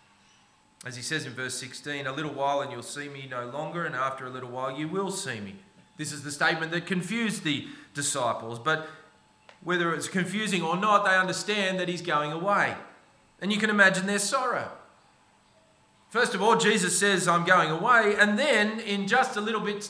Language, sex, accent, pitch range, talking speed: English, male, Australian, 135-205 Hz, 195 wpm